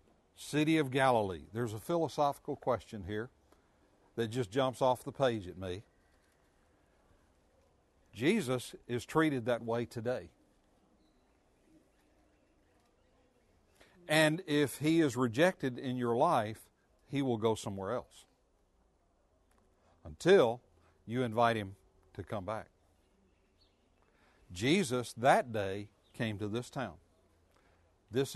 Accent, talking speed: American, 105 wpm